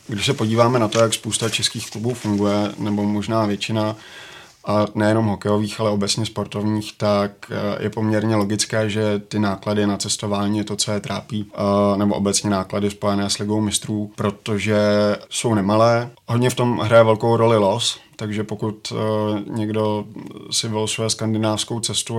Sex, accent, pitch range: male, native, 105-110 Hz